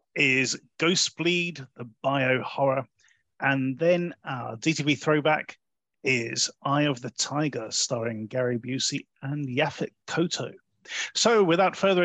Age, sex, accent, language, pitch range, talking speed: 30-49, male, British, English, 125-175 Hz, 125 wpm